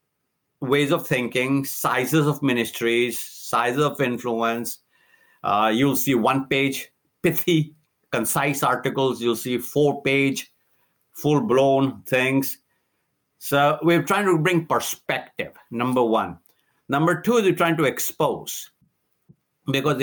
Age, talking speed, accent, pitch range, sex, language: 60-79, 120 wpm, Indian, 125-155 Hz, male, English